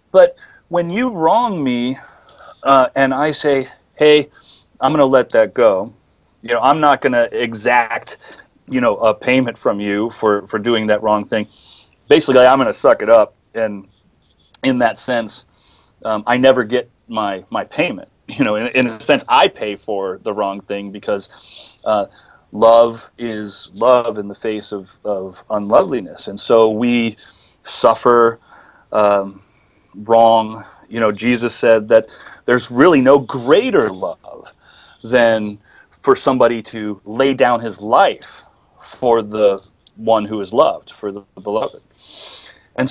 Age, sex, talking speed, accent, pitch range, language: 30-49, male, 155 wpm, American, 105-135 Hz, English